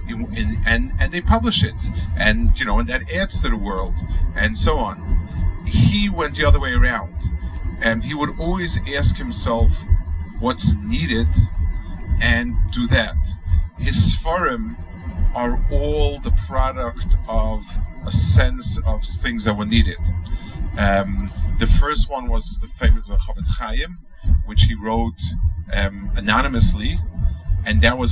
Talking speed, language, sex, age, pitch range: 140 wpm, English, male, 40-59, 80-100 Hz